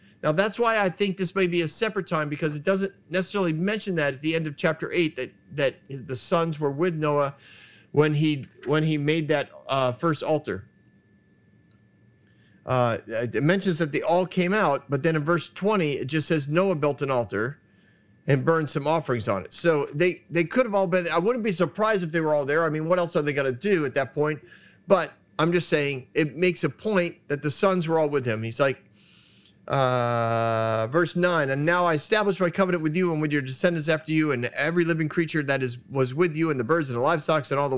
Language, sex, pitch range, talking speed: English, male, 145-175 Hz, 230 wpm